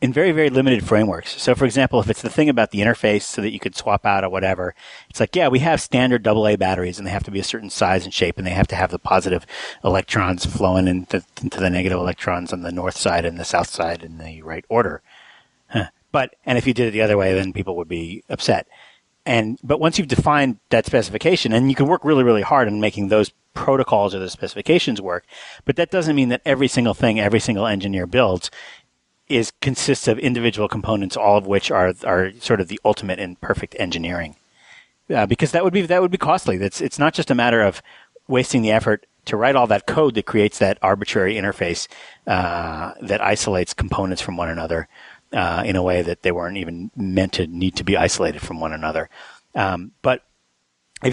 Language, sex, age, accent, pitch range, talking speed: English, male, 40-59, American, 95-130 Hz, 225 wpm